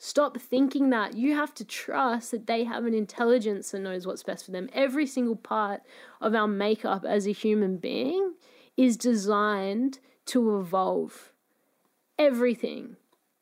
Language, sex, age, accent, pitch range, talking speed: English, female, 20-39, Australian, 220-270 Hz, 150 wpm